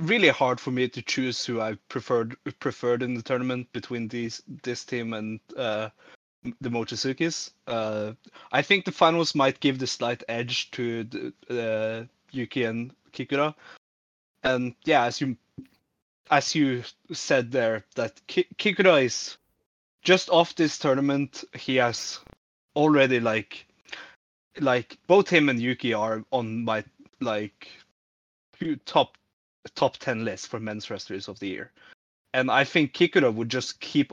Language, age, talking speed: English, 20-39, 145 wpm